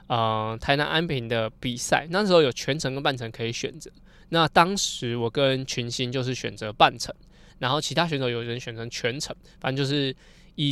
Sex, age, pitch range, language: male, 20-39, 125-160 Hz, Chinese